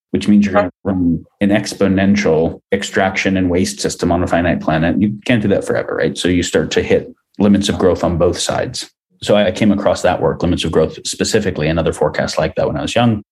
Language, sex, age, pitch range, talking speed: English, male, 30-49, 90-105 Hz, 225 wpm